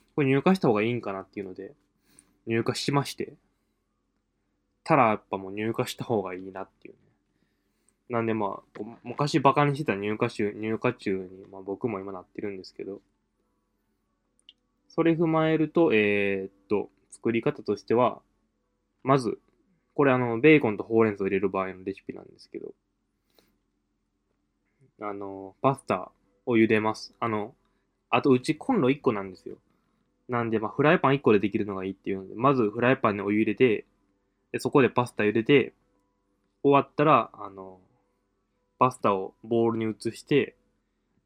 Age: 20-39